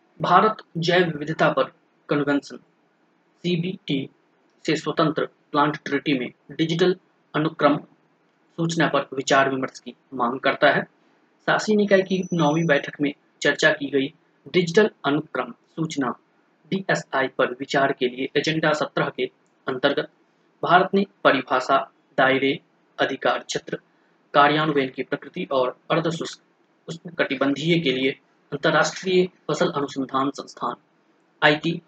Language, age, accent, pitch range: Hindi, 30-49, native, 135-170 Hz